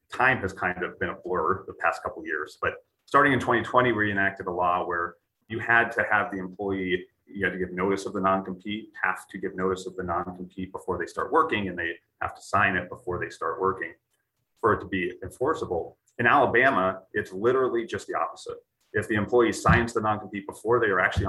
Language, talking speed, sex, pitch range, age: English, 220 wpm, male, 95-125 Hz, 30-49